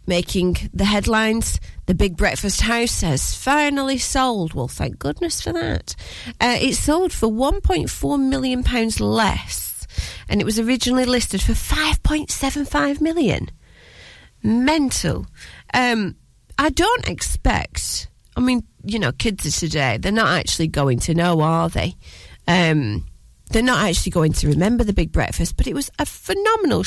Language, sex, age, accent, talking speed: English, female, 30-49, British, 145 wpm